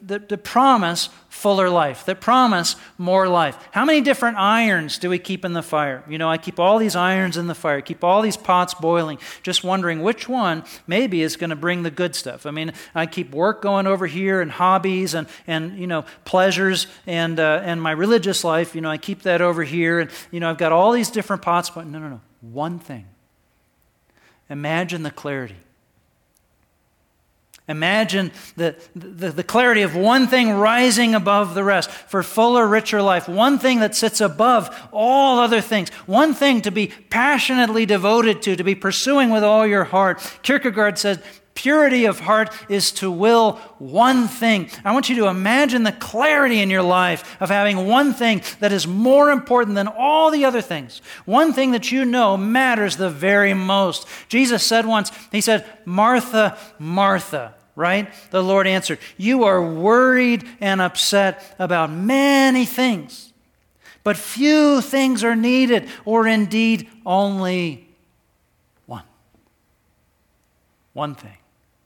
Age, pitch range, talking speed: 40-59, 175-230 Hz, 170 wpm